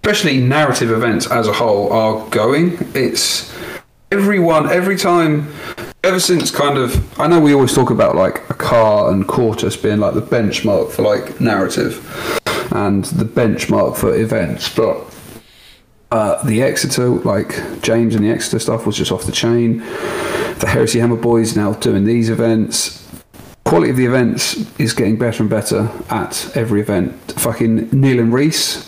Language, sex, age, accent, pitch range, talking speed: English, male, 40-59, British, 110-130 Hz, 160 wpm